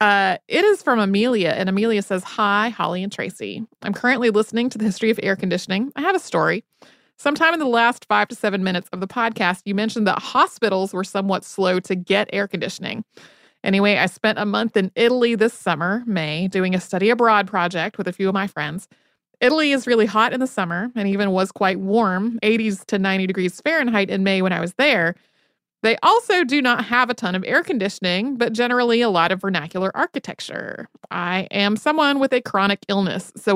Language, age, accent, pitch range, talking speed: English, 30-49, American, 190-250 Hz, 205 wpm